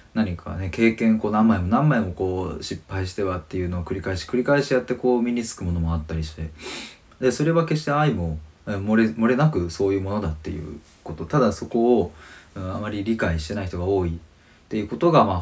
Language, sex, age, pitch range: Japanese, male, 20-39, 85-115 Hz